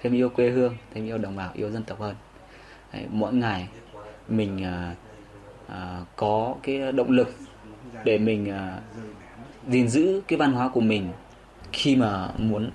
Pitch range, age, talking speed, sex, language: 100-125 Hz, 20-39, 145 wpm, male, Vietnamese